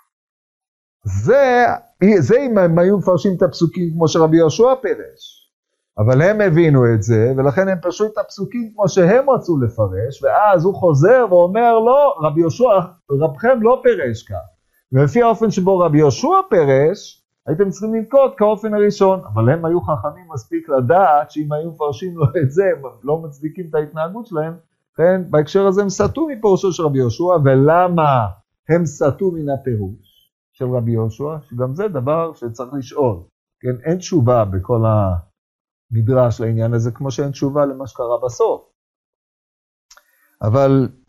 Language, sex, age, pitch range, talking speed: Hebrew, male, 50-69, 120-190 Hz, 150 wpm